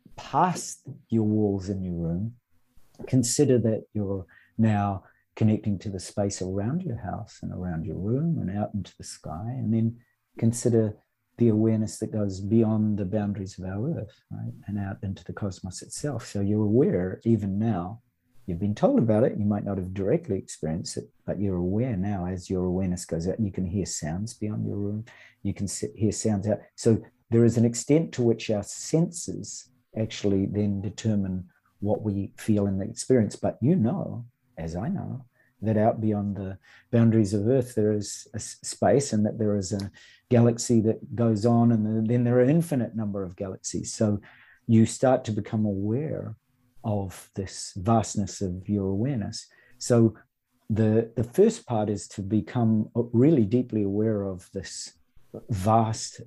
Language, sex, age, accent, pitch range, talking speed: English, male, 50-69, Australian, 100-120 Hz, 175 wpm